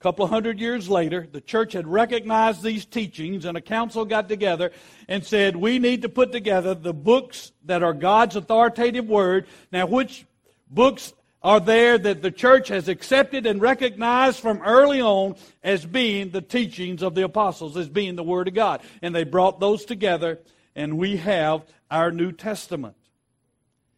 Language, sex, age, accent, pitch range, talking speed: English, male, 60-79, American, 155-220 Hz, 175 wpm